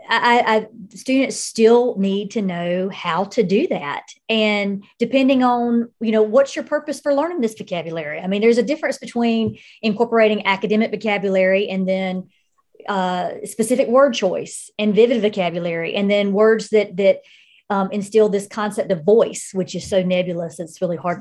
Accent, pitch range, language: American, 190-240 Hz, English